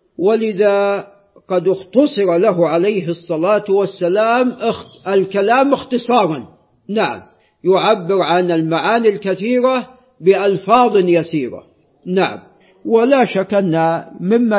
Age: 50-69